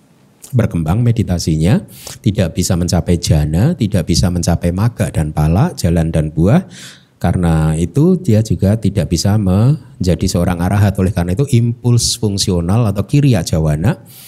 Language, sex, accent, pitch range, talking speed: Indonesian, male, native, 90-120 Hz, 135 wpm